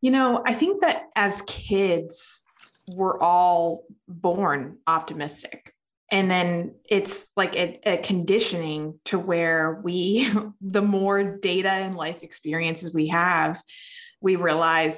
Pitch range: 175-205 Hz